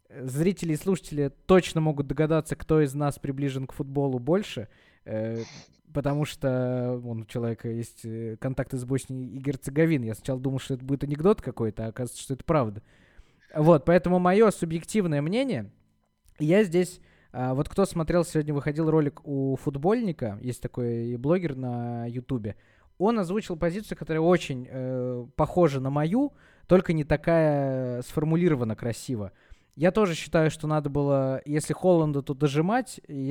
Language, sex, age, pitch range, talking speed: Russian, male, 20-39, 125-170 Hz, 150 wpm